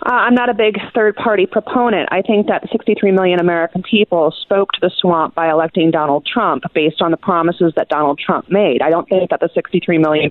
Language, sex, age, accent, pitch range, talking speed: English, female, 30-49, American, 165-210 Hz, 215 wpm